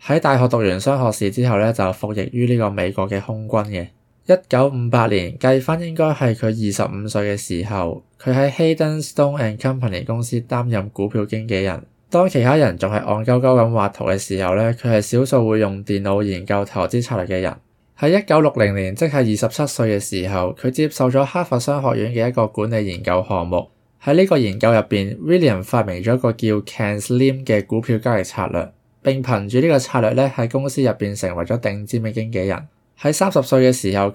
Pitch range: 100-130 Hz